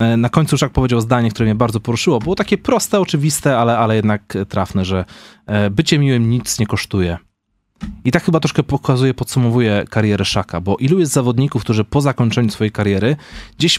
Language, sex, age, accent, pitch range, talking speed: Polish, male, 30-49, native, 105-140 Hz, 185 wpm